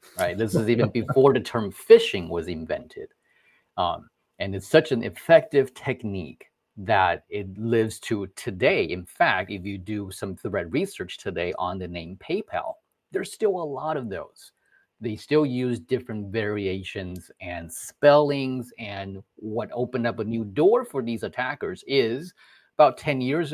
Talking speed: 160 wpm